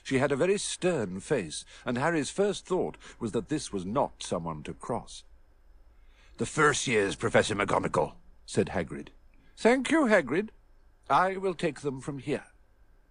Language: Vietnamese